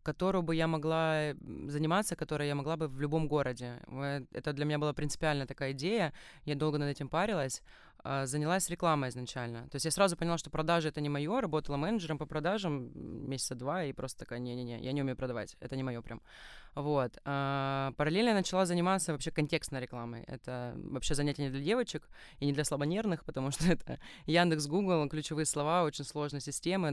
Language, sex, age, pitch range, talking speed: Russian, female, 20-39, 140-175 Hz, 185 wpm